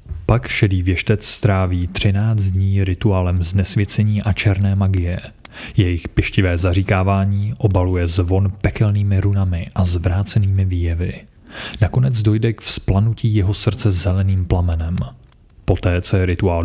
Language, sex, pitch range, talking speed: Czech, male, 90-105 Hz, 120 wpm